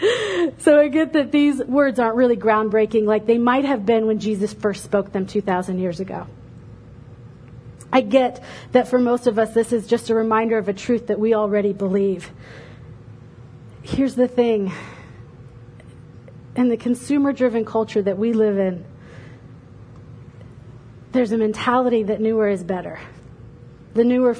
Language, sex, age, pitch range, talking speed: English, female, 30-49, 180-265 Hz, 150 wpm